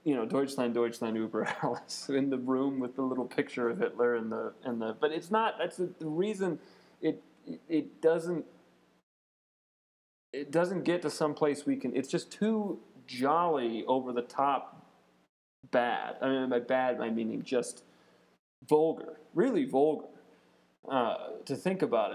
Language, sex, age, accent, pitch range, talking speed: English, male, 30-49, American, 120-165 Hz, 155 wpm